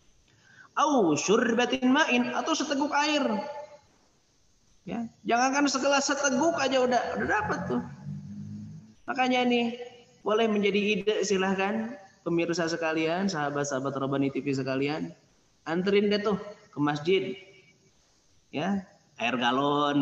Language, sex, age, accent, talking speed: Indonesian, male, 20-39, native, 110 wpm